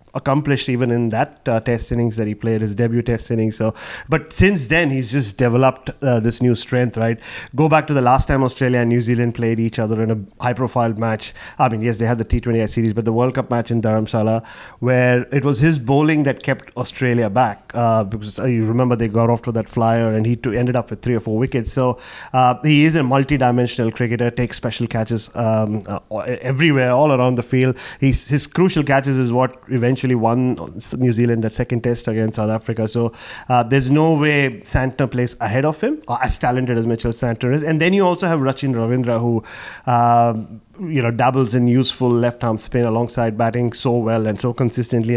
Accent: Indian